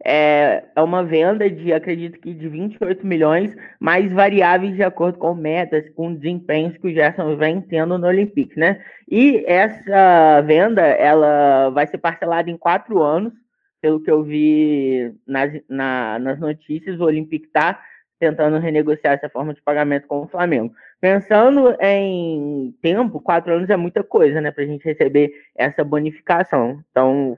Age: 20-39